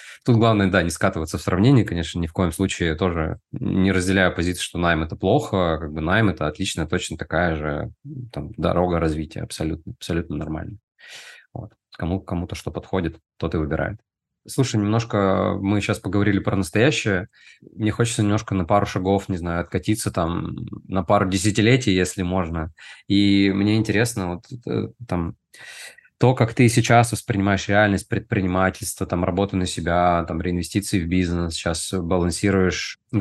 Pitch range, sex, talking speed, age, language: 90-105 Hz, male, 150 wpm, 20-39, Russian